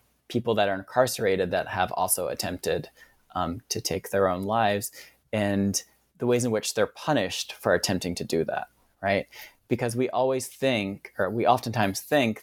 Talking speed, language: 170 wpm, English